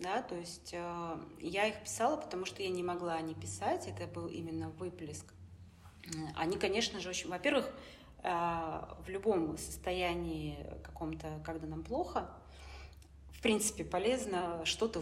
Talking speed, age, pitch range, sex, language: 140 wpm, 30-49, 160-200 Hz, female, Russian